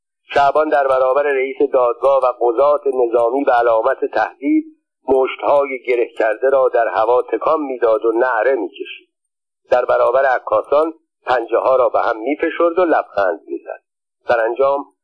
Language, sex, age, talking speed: Persian, male, 50-69, 150 wpm